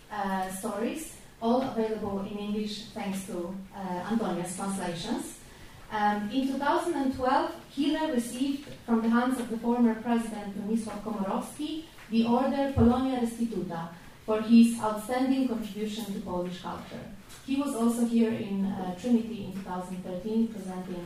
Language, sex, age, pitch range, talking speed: English, female, 30-49, 195-245 Hz, 130 wpm